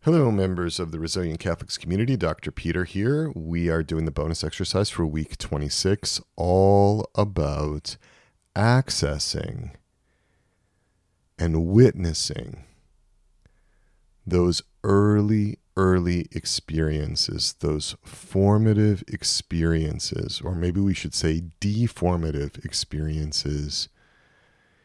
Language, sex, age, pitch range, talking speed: English, male, 40-59, 80-100 Hz, 90 wpm